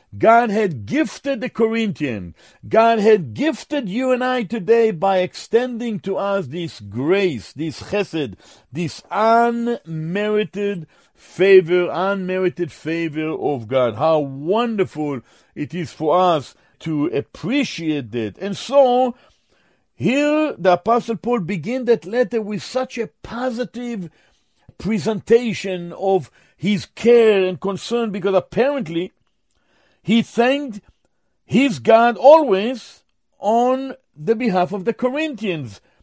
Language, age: English, 50-69